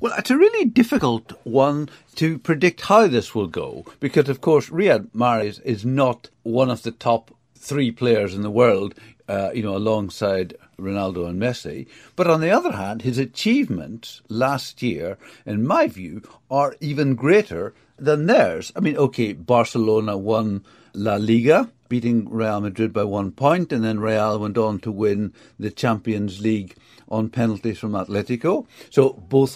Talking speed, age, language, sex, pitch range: 165 wpm, 60-79, English, male, 110-145 Hz